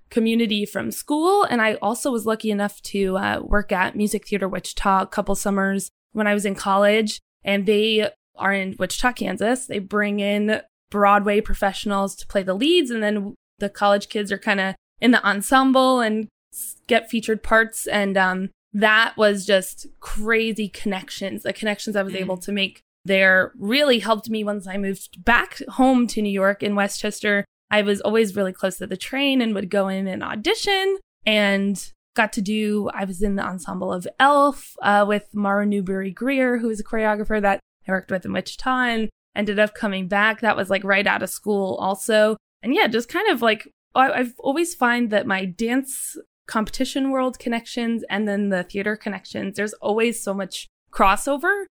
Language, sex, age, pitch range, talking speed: English, female, 20-39, 195-230 Hz, 185 wpm